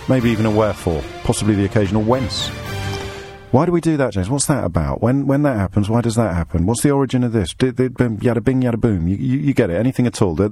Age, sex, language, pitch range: 50-69, male, English, 85-110 Hz